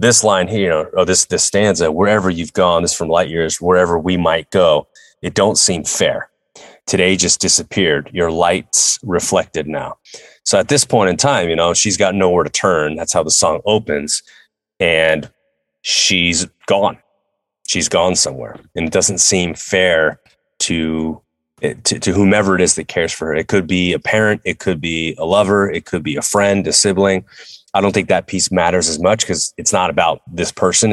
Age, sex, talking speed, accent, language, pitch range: 30-49, male, 195 wpm, American, English, 80-100 Hz